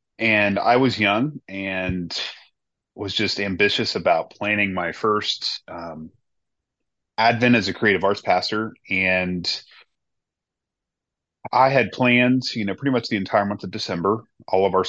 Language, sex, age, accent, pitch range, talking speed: English, male, 30-49, American, 90-110 Hz, 140 wpm